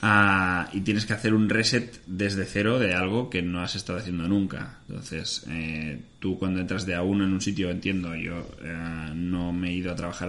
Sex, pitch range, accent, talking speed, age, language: male, 90-110 Hz, Spanish, 210 wpm, 20-39, Spanish